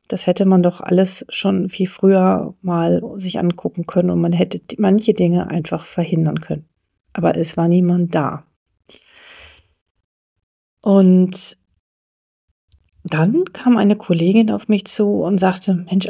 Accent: German